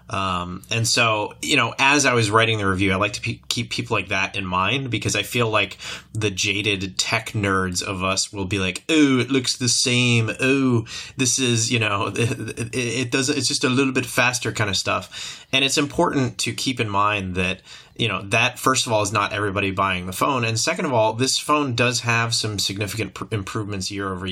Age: 30-49